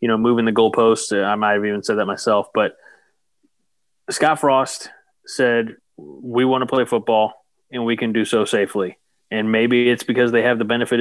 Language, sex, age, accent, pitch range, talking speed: English, male, 30-49, American, 110-125 Hz, 190 wpm